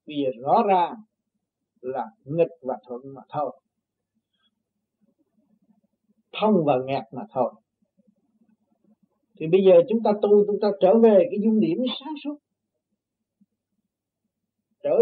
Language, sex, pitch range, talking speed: Vietnamese, male, 185-225 Hz, 120 wpm